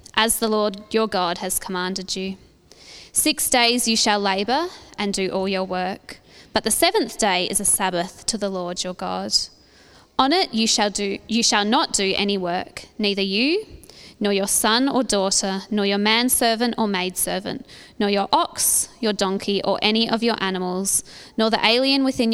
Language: English